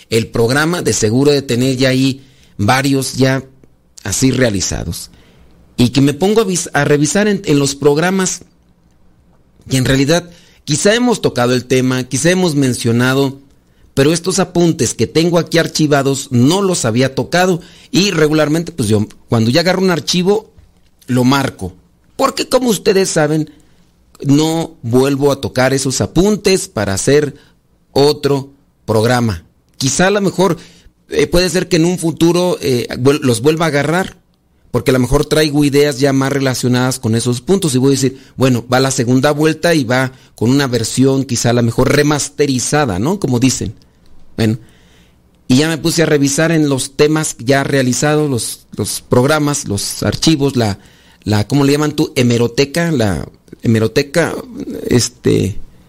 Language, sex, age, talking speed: Spanish, male, 40-59, 160 wpm